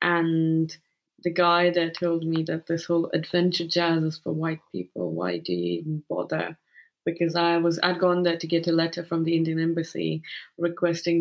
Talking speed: 185 wpm